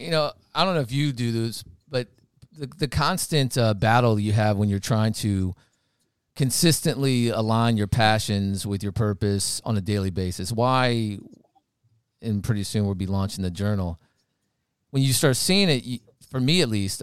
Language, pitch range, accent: English, 105-130 Hz, American